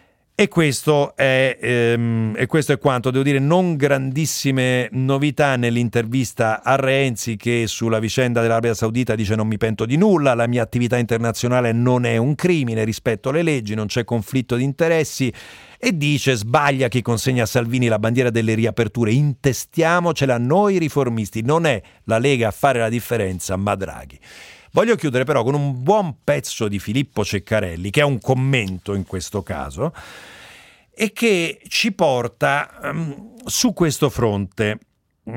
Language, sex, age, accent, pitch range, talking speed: Italian, male, 40-59, native, 110-145 Hz, 150 wpm